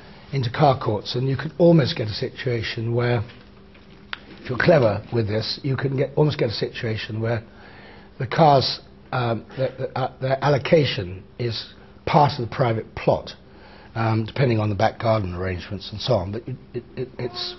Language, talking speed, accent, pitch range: English, 165 wpm, British, 100-120 Hz